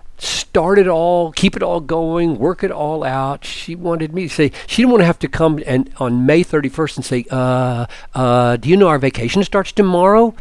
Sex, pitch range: male, 135-180 Hz